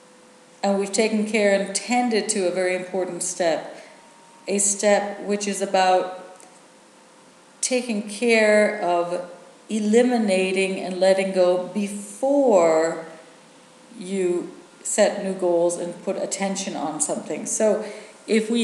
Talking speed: 115 wpm